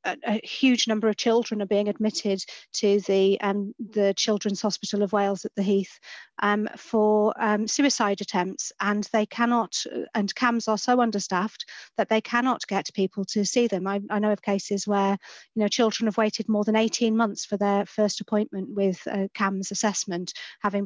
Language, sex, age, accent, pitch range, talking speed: English, female, 40-59, British, 200-220 Hz, 185 wpm